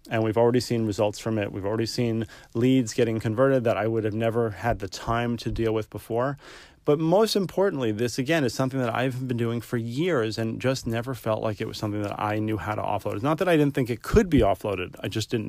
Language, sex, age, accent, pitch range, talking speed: English, male, 30-49, American, 100-120 Hz, 250 wpm